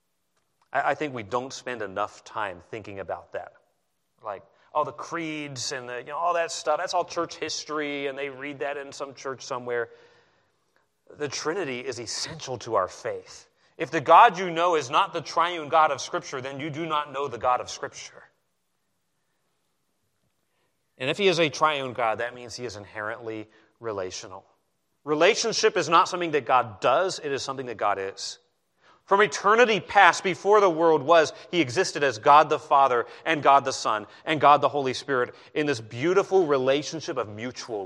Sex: male